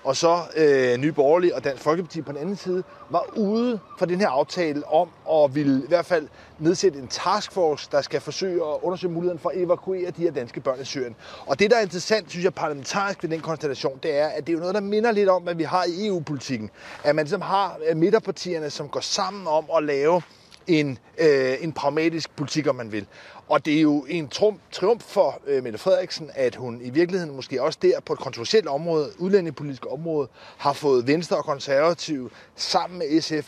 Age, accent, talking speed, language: 30-49, native, 210 wpm, Danish